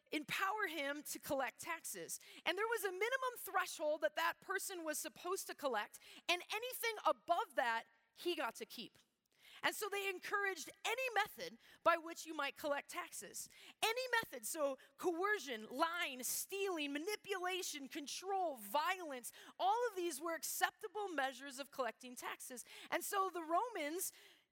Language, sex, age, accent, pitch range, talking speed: English, female, 30-49, American, 275-375 Hz, 145 wpm